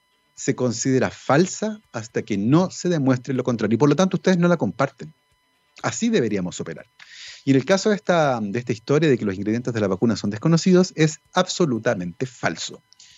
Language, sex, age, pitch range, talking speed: Spanish, male, 30-49, 115-165 Hz, 190 wpm